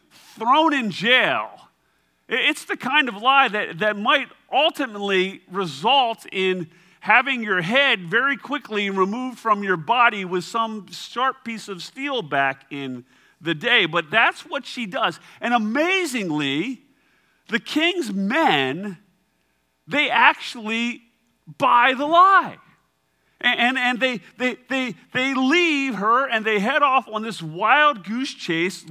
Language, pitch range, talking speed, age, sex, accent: English, 155-245 Hz, 135 wpm, 40-59, male, American